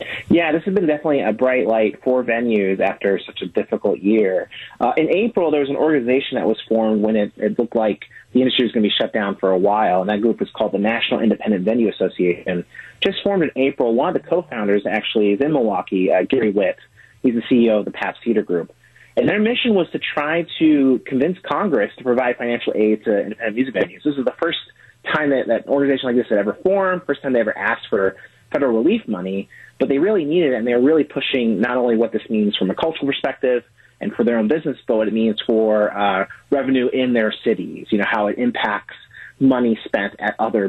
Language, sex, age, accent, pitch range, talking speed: English, male, 30-49, American, 110-150 Hz, 230 wpm